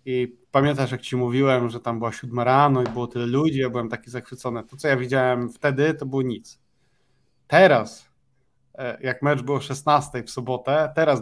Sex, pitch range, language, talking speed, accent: male, 115-135 Hz, Polish, 180 wpm, native